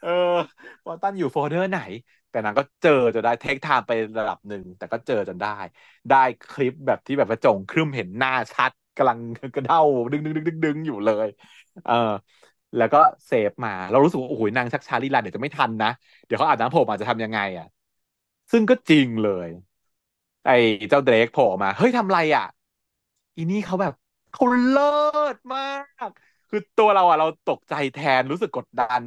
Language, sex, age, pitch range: Thai, male, 20-39, 125-195 Hz